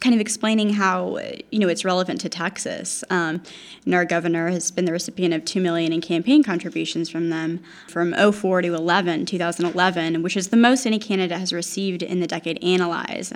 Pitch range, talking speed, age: 175-205 Hz, 190 wpm, 10-29